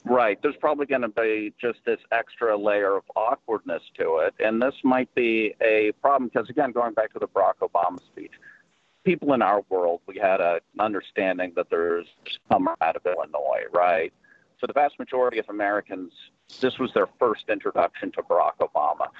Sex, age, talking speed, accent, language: male, 50-69, 180 wpm, American, English